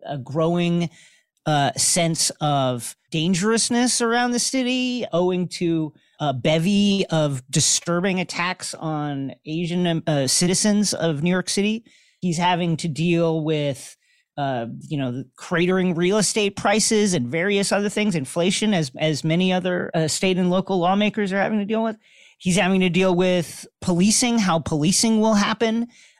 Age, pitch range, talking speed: 40-59, 145-200 Hz, 150 wpm